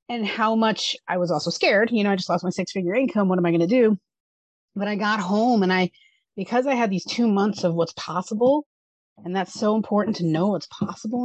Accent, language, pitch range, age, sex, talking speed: American, English, 180-220 Hz, 30-49, female, 235 wpm